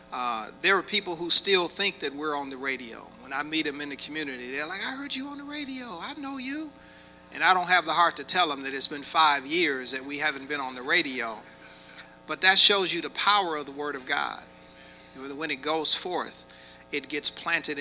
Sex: male